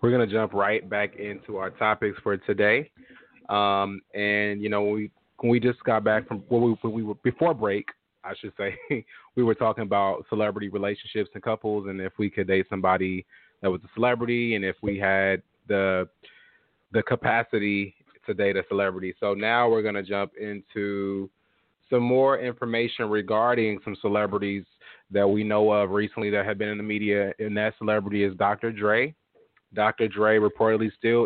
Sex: male